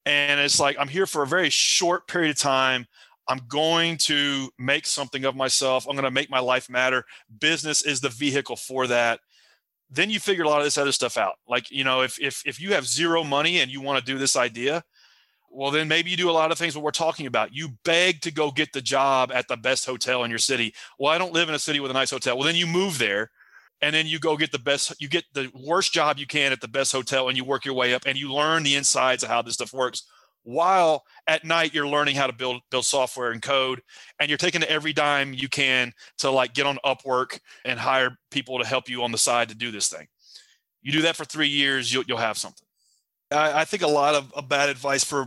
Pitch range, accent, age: 130-155 Hz, American, 30-49